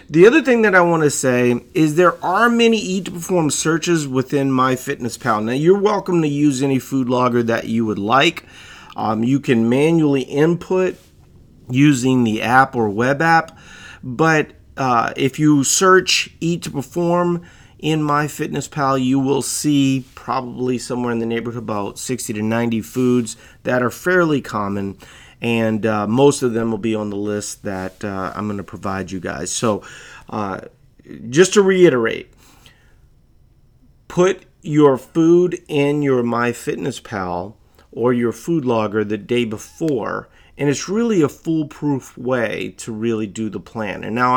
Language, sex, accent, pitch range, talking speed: English, male, American, 115-155 Hz, 160 wpm